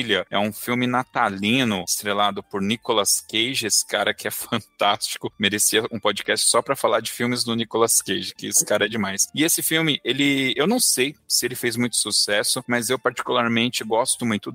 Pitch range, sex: 110-140 Hz, male